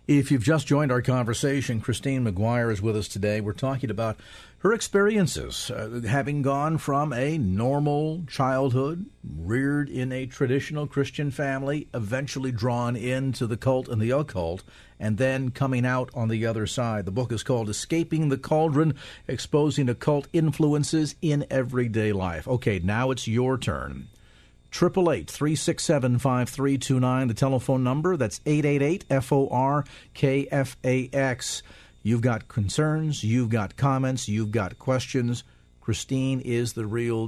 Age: 50-69